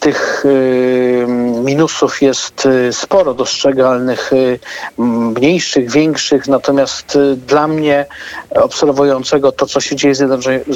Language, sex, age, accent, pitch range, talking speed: Polish, male, 50-69, native, 130-145 Hz, 90 wpm